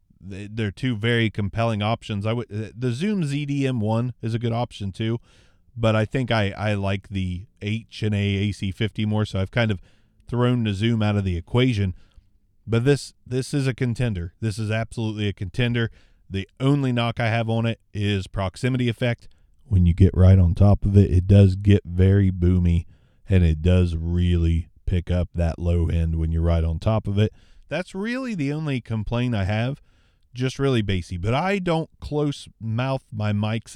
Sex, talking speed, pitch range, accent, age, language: male, 185 wpm, 95-115 Hz, American, 30-49, English